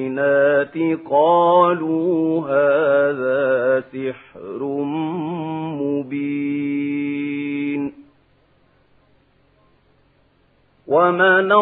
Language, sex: Arabic, male